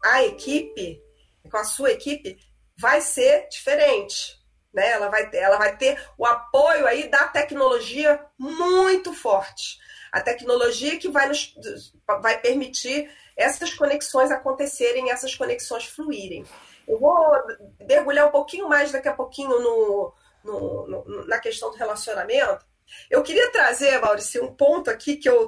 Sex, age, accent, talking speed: female, 40-59, Brazilian, 130 wpm